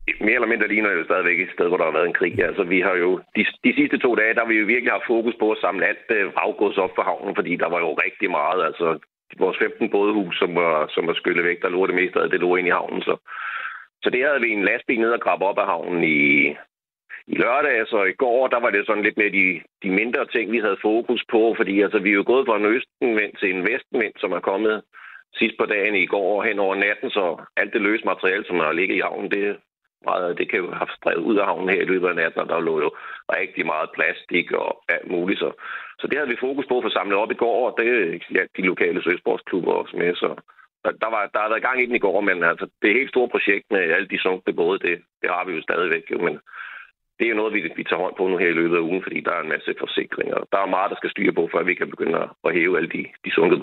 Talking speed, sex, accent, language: 270 wpm, male, native, Danish